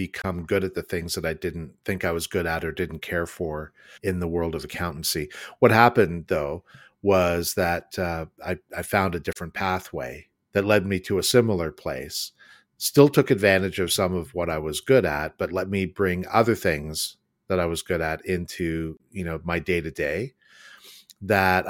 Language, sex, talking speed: English, male, 195 wpm